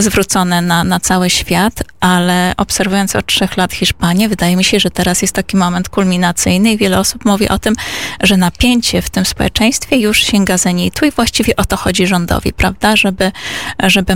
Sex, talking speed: female, 190 wpm